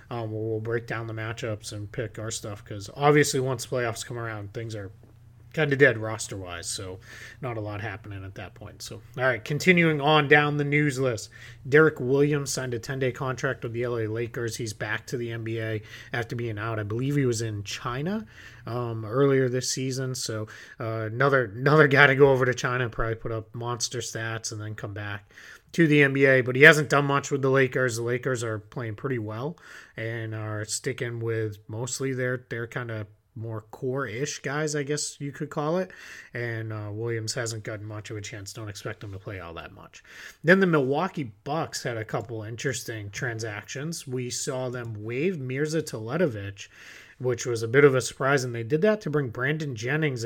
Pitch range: 110-135 Hz